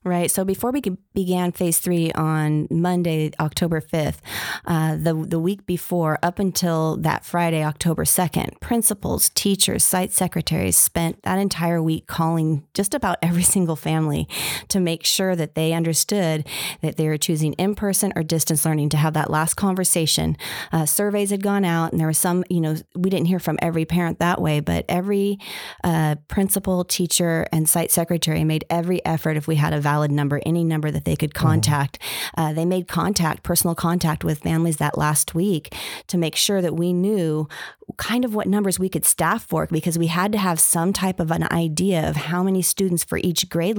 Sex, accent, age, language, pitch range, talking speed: female, American, 30-49, English, 155-185 Hz, 190 wpm